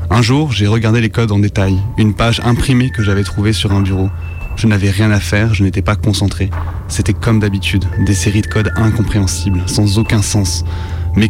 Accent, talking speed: French, 200 wpm